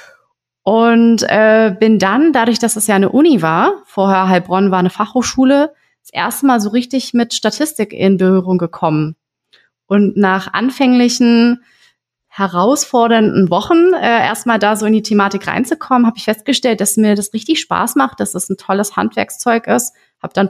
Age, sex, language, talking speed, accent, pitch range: 30-49, female, German, 165 wpm, German, 195-245 Hz